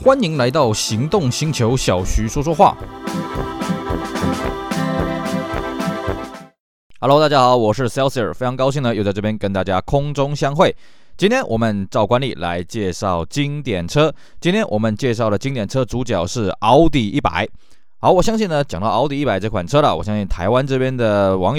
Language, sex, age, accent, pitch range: Chinese, male, 20-39, native, 100-140 Hz